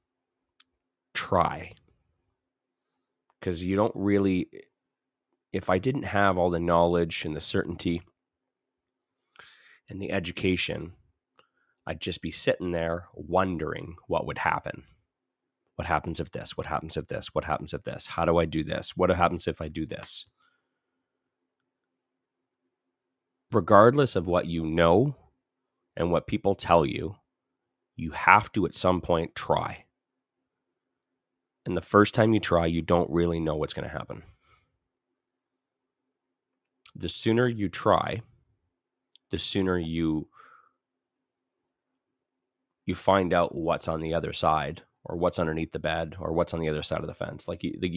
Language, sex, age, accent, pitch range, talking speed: English, male, 30-49, American, 80-95 Hz, 140 wpm